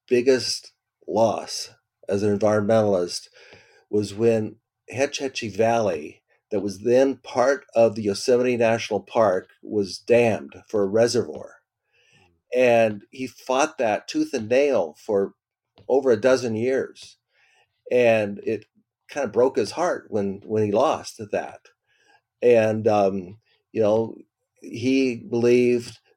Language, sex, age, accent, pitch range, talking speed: English, male, 50-69, American, 105-130 Hz, 125 wpm